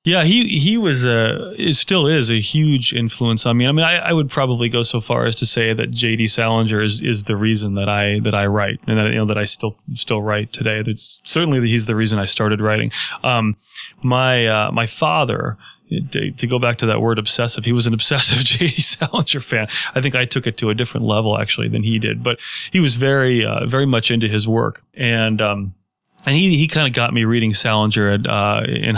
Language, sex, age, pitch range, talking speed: English, male, 20-39, 110-125 Hz, 235 wpm